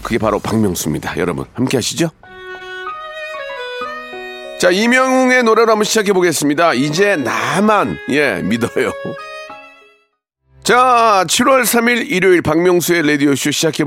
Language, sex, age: Korean, male, 40-59